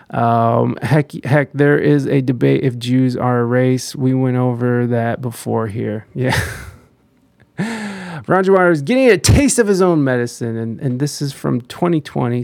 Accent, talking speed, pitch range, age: American, 165 wpm, 130-155 Hz, 30-49